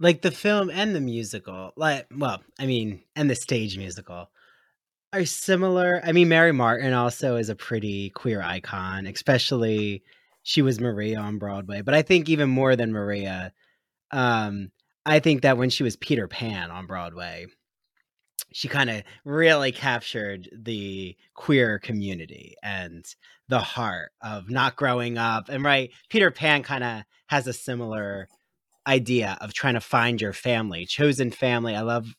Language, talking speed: English, 160 wpm